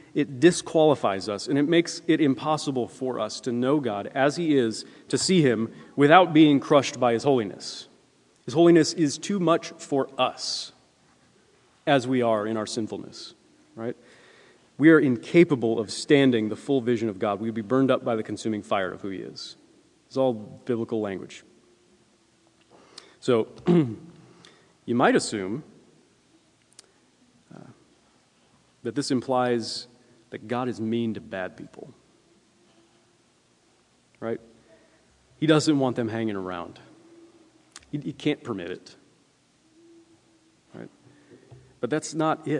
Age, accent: 30-49, American